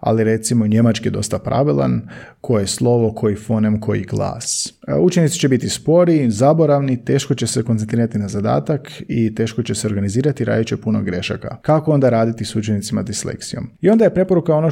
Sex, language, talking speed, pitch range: male, Croatian, 175 wpm, 110-145 Hz